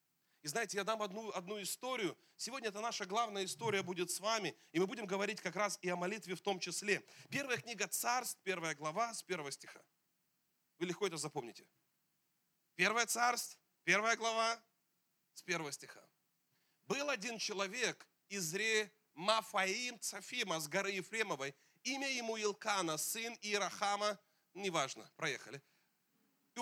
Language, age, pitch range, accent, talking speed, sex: Russian, 30-49, 185-235 Hz, native, 145 wpm, male